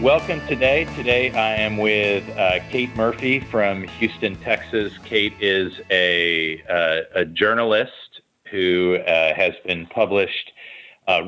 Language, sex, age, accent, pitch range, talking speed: English, male, 40-59, American, 90-105 Hz, 130 wpm